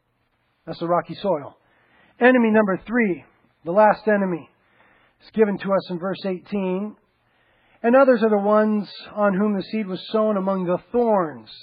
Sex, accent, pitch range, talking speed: male, American, 190-240 Hz, 160 wpm